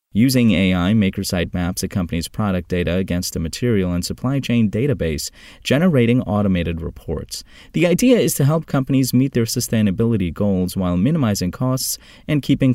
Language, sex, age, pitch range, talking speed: English, male, 30-49, 90-120 Hz, 155 wpm